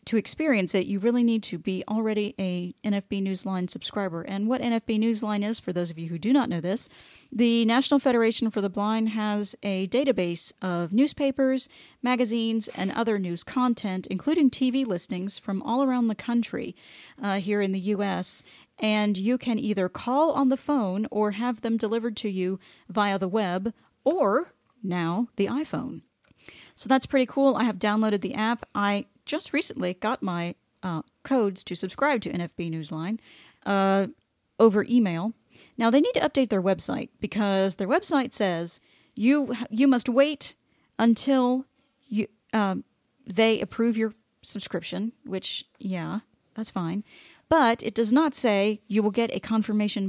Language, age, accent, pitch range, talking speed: English, 40-59, American, 195-245 Hz, 165 wpm